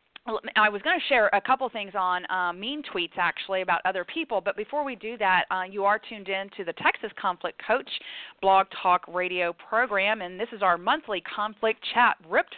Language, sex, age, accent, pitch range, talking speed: English, female, 40-59, American, 180-215 Hz, 205 wpm